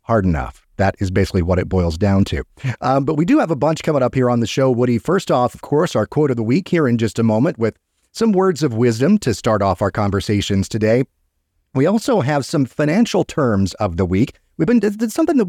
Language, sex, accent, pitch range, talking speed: English, male, American, 100-130 Hz, 250 wpm